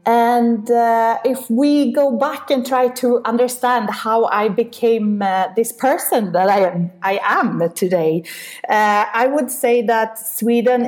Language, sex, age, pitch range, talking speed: English, female, 30-49, 180-225 Hz, 150 wpm